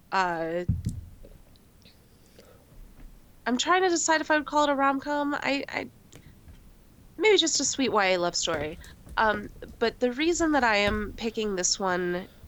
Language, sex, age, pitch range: English, female, 20-39, 165-200 Hz